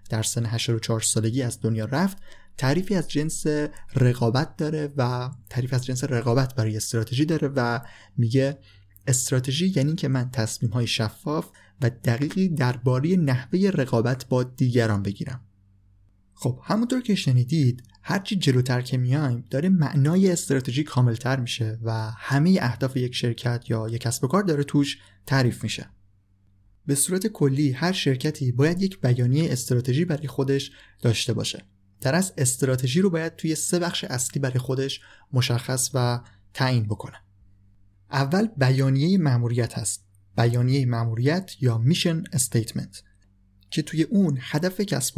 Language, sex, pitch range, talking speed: Persian, male, 115-145 Hz, 140 wpm